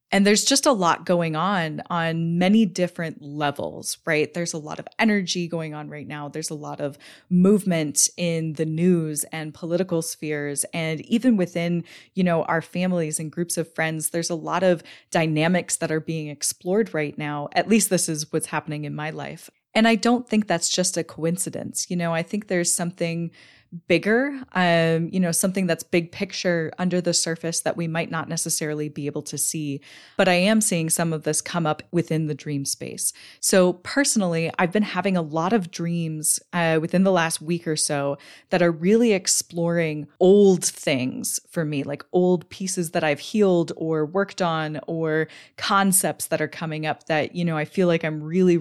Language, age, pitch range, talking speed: English, 20-39, 155-180 Hz, 195 wpm